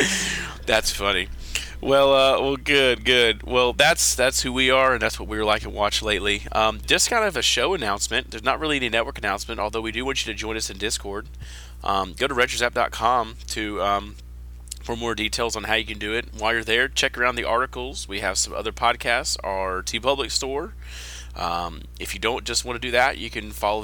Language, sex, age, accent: English, male, 30-49, American